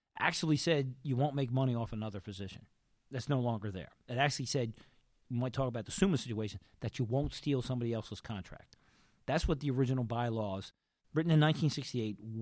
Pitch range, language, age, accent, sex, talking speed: 110-140 Hz, English, 40-59, American, male, 185 wpm